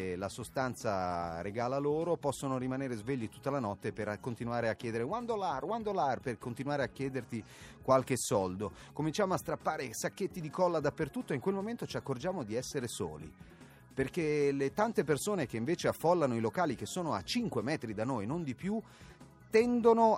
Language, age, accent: Italian, 30-49, native